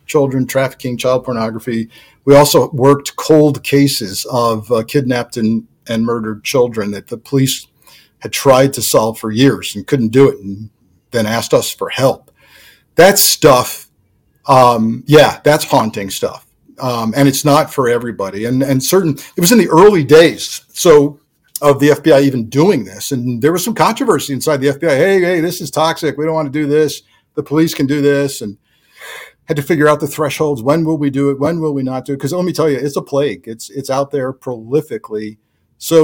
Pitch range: 120-150 Hz